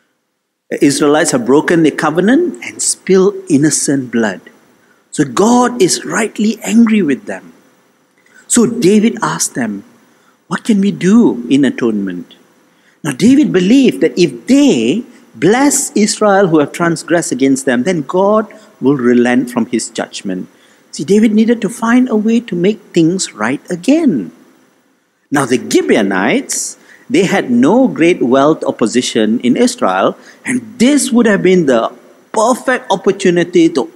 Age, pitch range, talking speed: 50-69, 160-245 Hz, 140 wpm